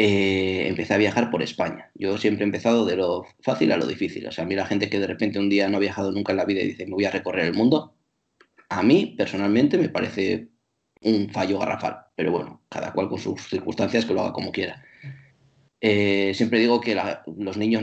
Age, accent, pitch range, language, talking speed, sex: 30-49, Spanish, 100-120 Hz, Spanish, 230 wpm, male